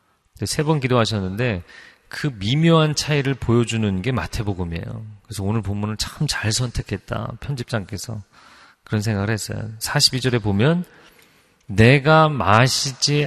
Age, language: 40-59, Korean